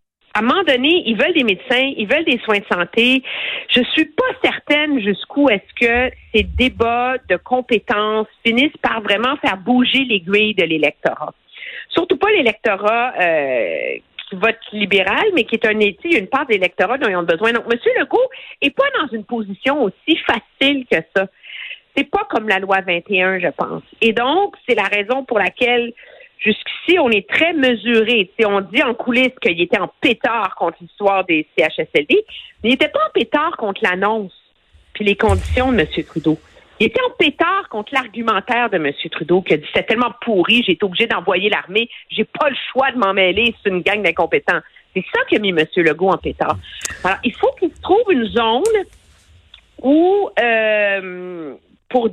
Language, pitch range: French, 200-285 Hz